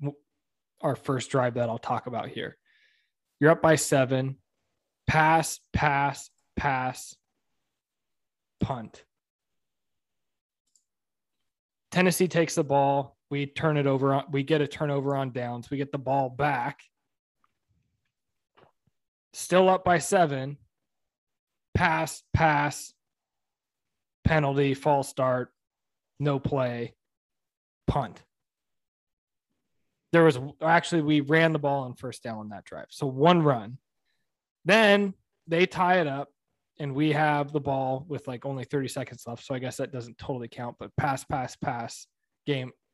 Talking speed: 130 wpm